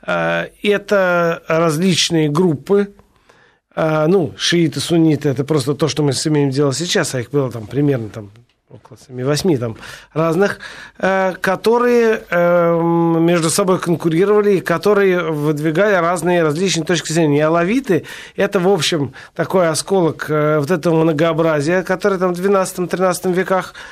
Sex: male